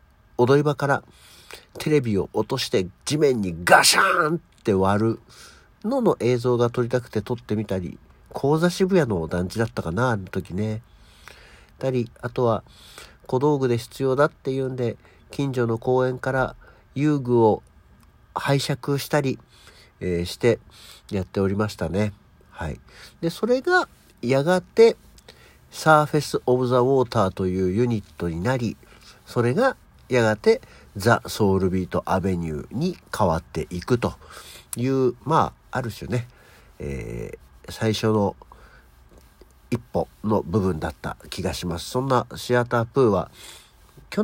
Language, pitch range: Japanese, 95-135 Hz